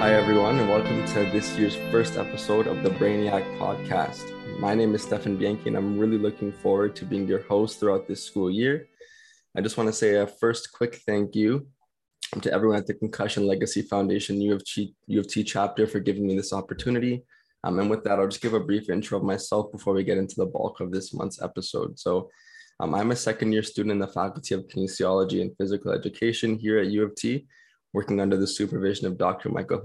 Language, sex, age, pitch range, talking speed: English, male, 20-39, 100-110 Hz, 215 wpm